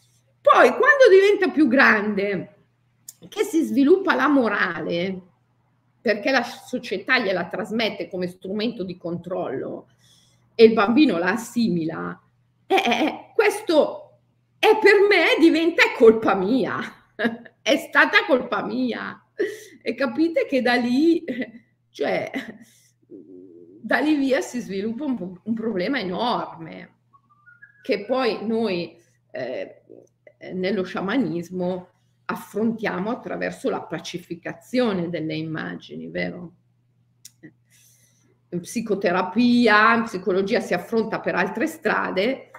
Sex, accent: female, native